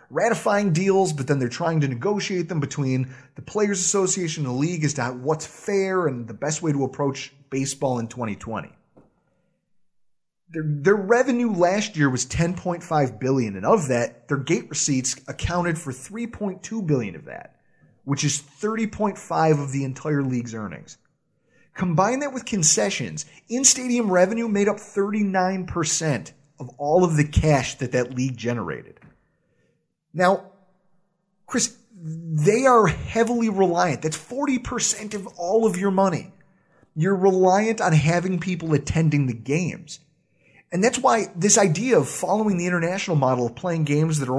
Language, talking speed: English, 150 wpm